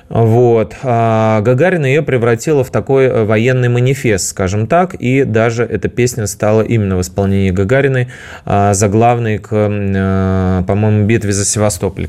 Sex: male